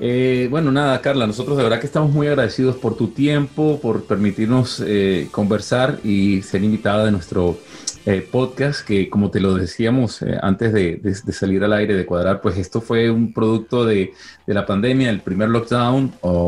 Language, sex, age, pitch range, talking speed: Spanish, male, 30-49, 105-145 Hz, 195 wpm